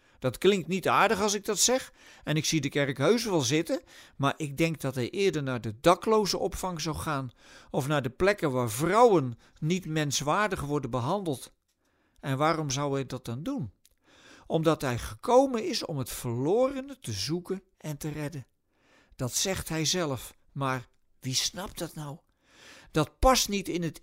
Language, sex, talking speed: Dutch, male, 175 wpm